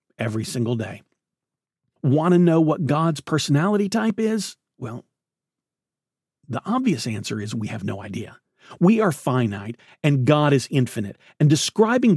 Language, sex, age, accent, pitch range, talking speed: English, male, 40-59, American, 125-190 Hz, 145 wpm